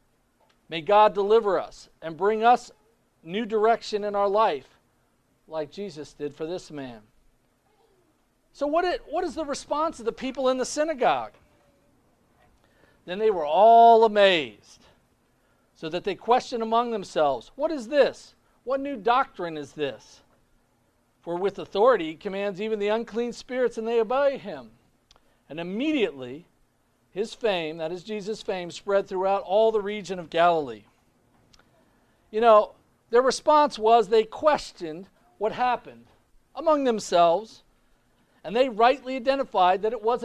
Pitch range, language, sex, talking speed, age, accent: 175-255 Hz, English, male, 140 wpm, 50-69, American